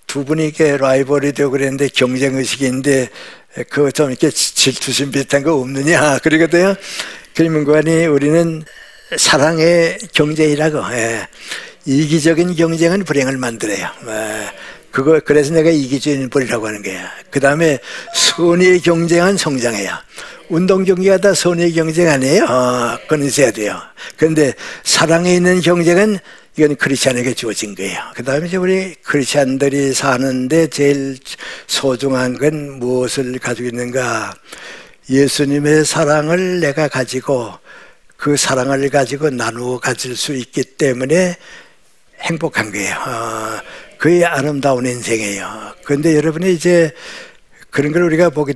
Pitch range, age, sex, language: 135-165 Hz, 60-79, male, Korean